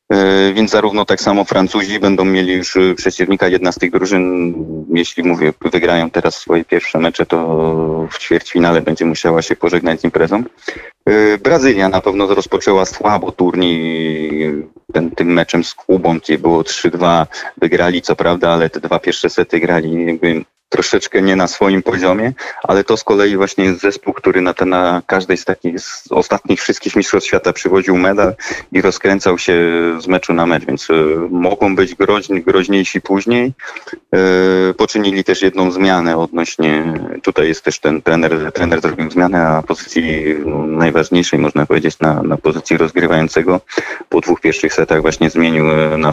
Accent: native